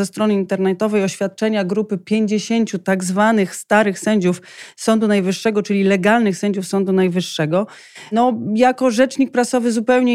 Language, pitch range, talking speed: Polish, 185-225 Hz, 130 wpm